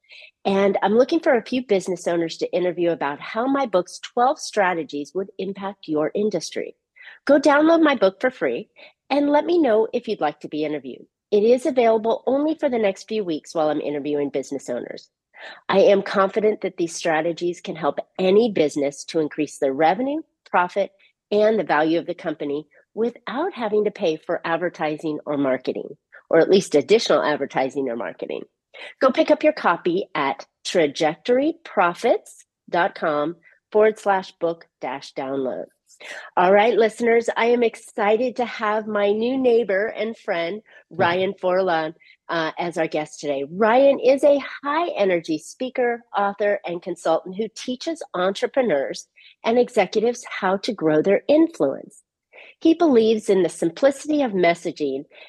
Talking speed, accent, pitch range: 155 wpm, American, 165-245 Hz